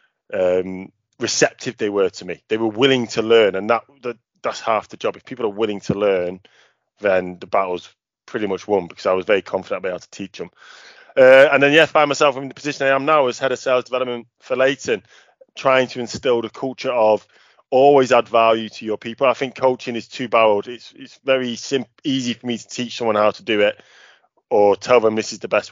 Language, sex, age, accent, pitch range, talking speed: English, male, 20-39, British, 105-130 Hz, 235 wpm